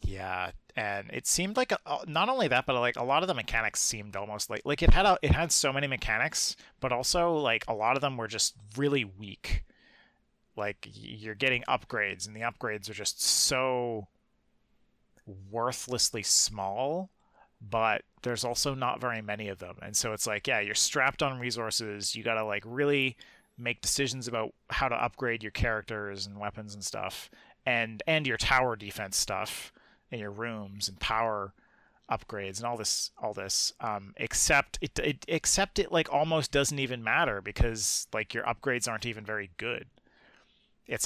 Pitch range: 105-130 Hz